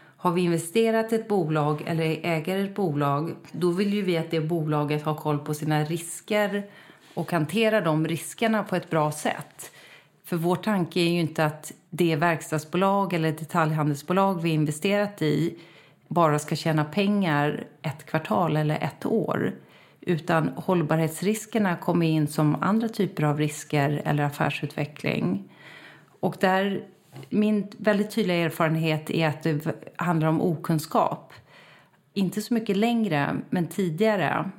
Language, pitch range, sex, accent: Swedish, 160-200 Hz, female, native